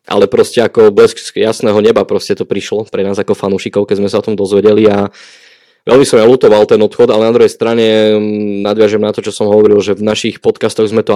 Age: 20-39